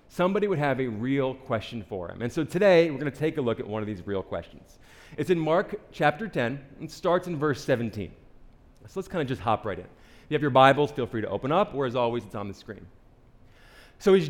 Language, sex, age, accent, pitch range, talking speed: English, male, 30-49, American, 115-175 Hz, 255 wpm